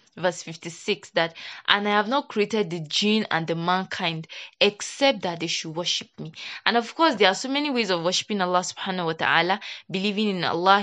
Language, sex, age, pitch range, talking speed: English, female, 20-39, 180-220 Hz, 200 wpm